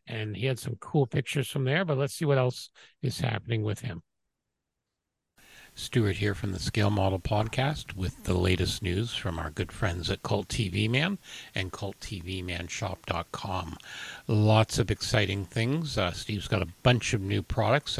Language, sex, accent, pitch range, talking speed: English, male, American, 100-130 Hz, 165 wpm